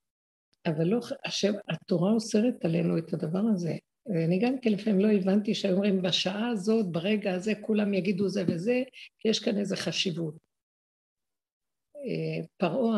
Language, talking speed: Hebrew, 145 wpm